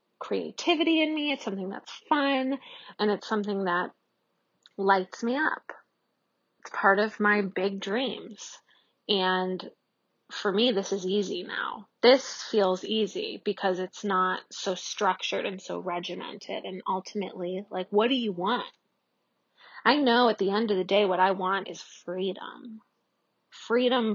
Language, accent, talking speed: English, American, 145 wpm